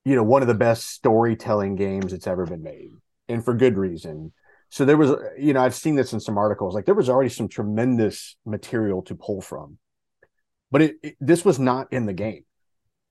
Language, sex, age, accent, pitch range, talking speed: English, male, 30-49, American, 100-125 Hz, 210 wpm